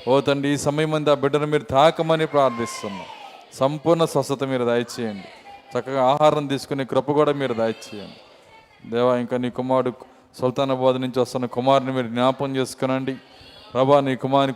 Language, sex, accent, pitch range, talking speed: Telugu, male, native, 125-140 Hz, 140 wpm